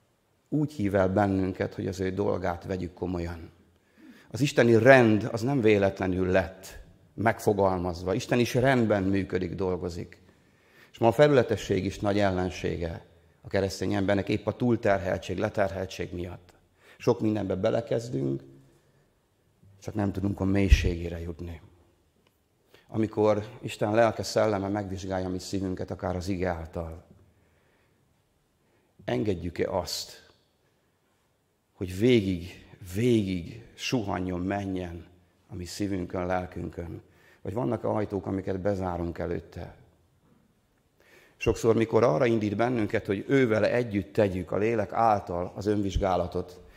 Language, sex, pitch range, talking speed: Hungarian, male, 90-110 Hz, 115 wpm